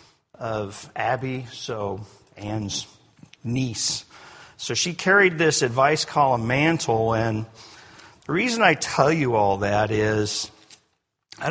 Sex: male